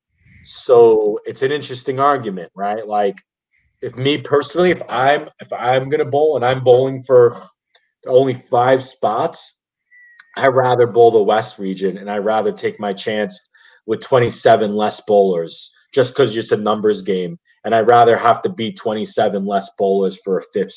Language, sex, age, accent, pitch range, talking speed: English, male, 30-49, American, 105-140 Hz, 170 wpm